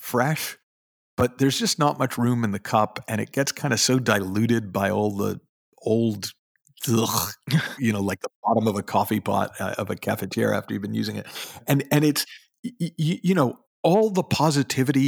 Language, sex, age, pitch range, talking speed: English, male, 50-69, 105-140 Hz, 200 wpm